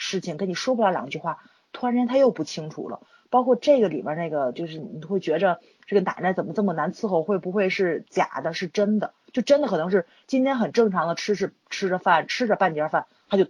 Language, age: Chinese, 30-49